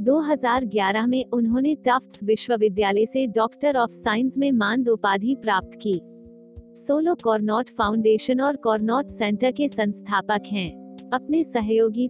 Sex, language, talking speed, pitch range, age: female, Hindi, 120 wpm, 210-255 Hz, 50-69